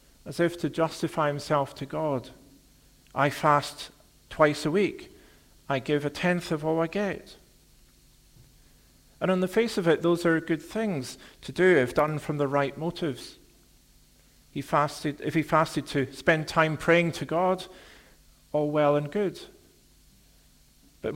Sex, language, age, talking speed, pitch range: male, English, 50-69, 145 wpm, 140-165 Hz